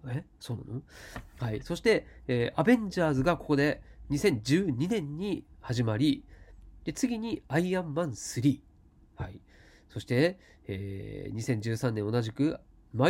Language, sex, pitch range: Japanese, male, 115-170 Hz